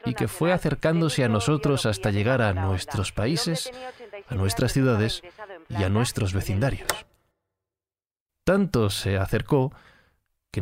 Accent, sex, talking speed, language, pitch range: Spanish, male, 125 wpm, Spanish, 110-165 Hz